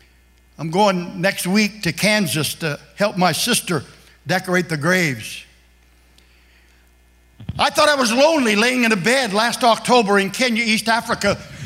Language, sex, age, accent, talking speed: English, male, 60-79, American, 145 wpm